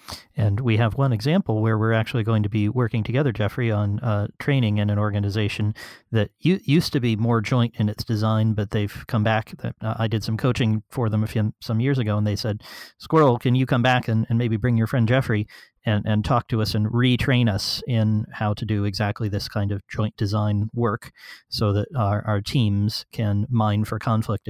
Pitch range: 105-115 Hz